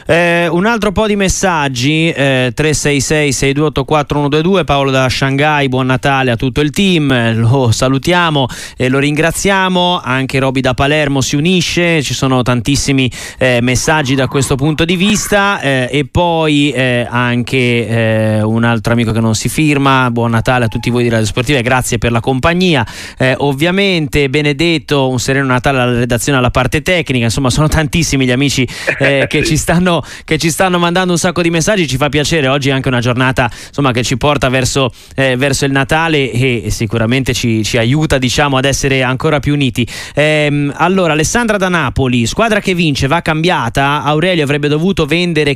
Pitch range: 125-155 Hz